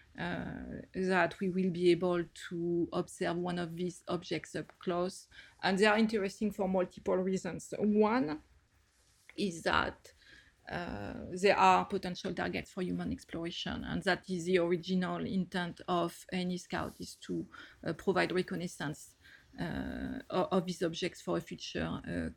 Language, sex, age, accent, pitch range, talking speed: English, female, 30-49, French, 175-195 Hz, 145 wpm